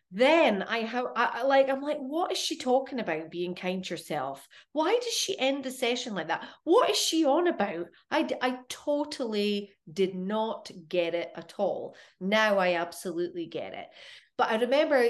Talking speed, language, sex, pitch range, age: 190 wpm, English, female, 175-270 Hz, 30-49